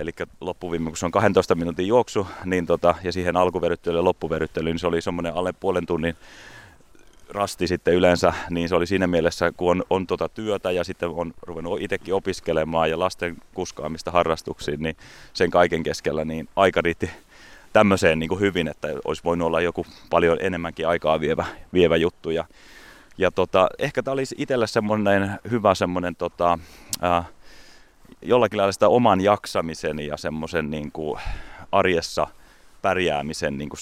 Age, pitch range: 30-49, 85-100 Hz